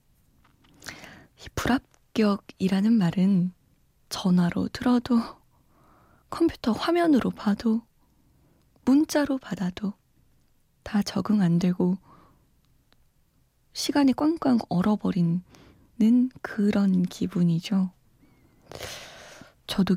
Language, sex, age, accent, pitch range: Korean, female, 20-39, native, 175-235 Hz